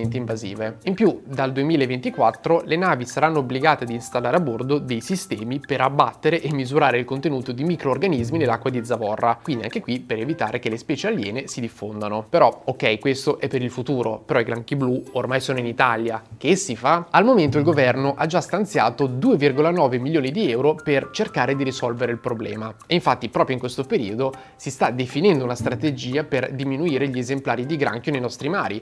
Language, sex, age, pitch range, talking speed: Italian, male, 20-39, 125-160 Hz, 190 wpm